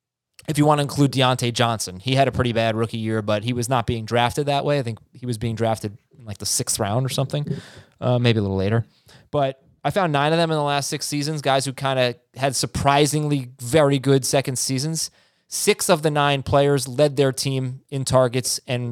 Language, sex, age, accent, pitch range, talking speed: English, male, 20-39, American, 125-155 Hz, 230 wpm